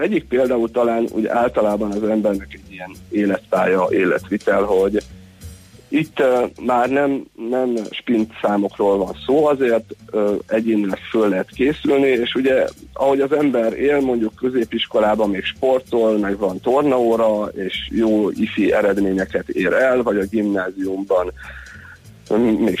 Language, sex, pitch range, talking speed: Hungarian, male, 105-130 Hz, 130 wpm